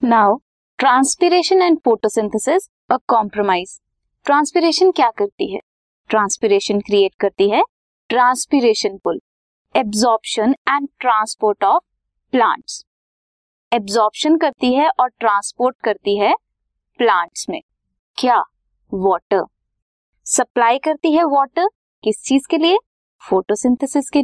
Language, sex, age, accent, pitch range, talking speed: Hindi, female, 20-39, native, 210-320 Hz, 100 wpm